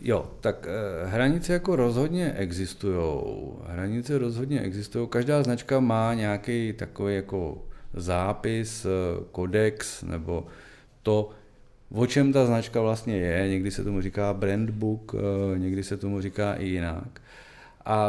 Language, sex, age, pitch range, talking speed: Czech, male, 40-59, 100-125 Hz, 115 wpm